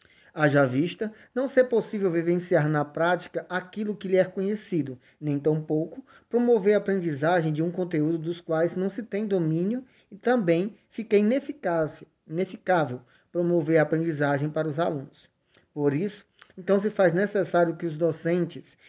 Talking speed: 145 wpm